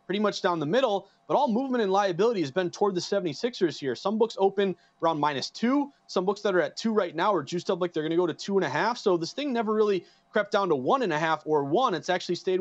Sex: male